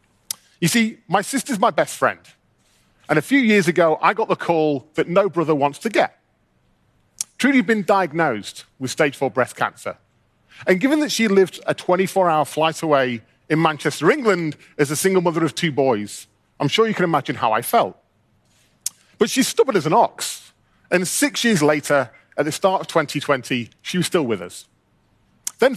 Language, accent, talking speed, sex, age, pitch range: English, British, 185 wpm, male, 40-59, 135-190 Hz